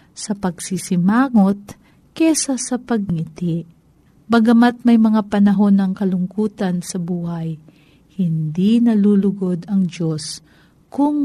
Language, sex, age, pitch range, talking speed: Filipino, female, 50-69, 175-235 Hz, 95 wpm